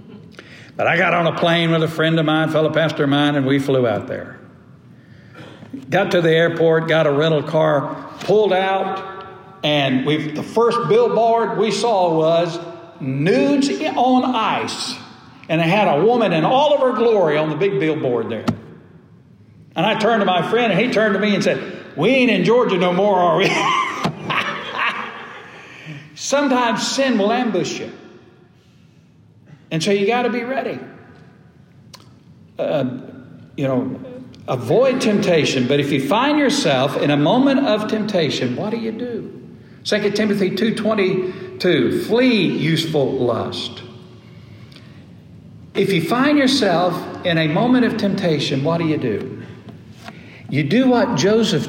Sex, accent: male, American